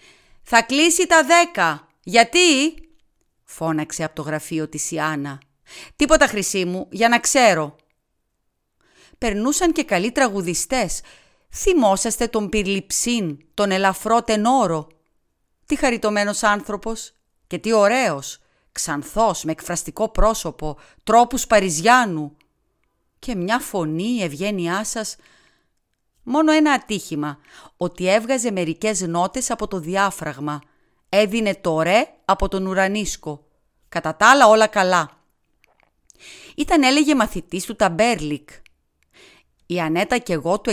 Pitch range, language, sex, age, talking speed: 165-240 Hz, Greek, female, 40-59, 110 wpm